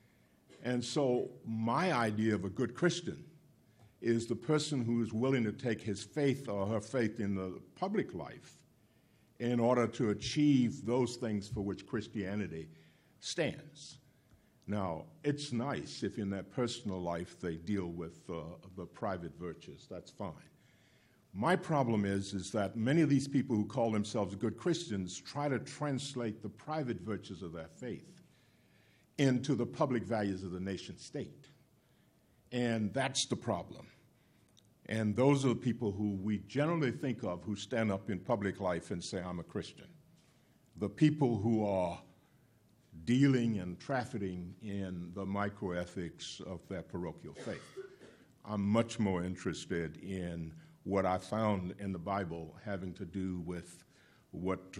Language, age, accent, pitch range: English, 60-79, American, 95-125 Hz